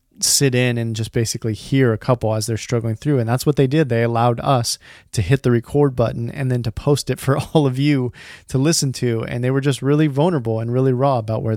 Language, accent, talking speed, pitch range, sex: English, American, 250 wpm, 115-140 Hz, male